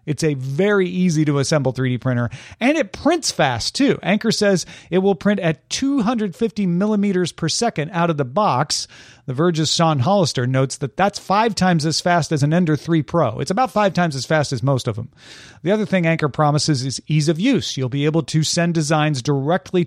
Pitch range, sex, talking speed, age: 135-180 Hz, male, 200 wpm, 40-59